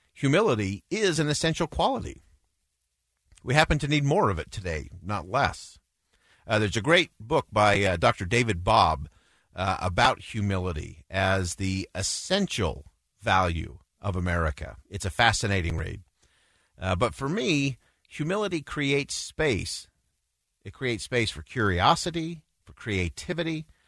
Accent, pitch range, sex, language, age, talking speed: American, 90-140 Hz, male, English, 50-69, 130 wpm